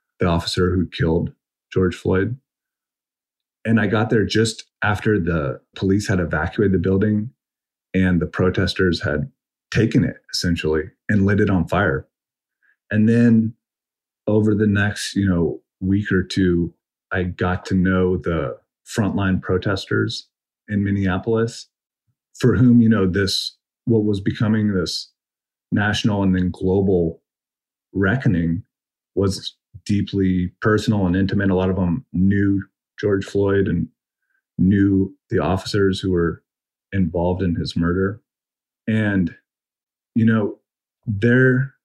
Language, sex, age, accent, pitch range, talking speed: English, male, 30-49, American, 90-110 Hz, 130 wpm